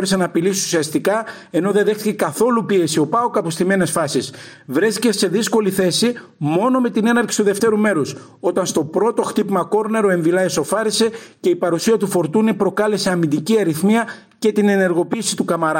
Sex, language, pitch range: male, Greek, 165-215 Hz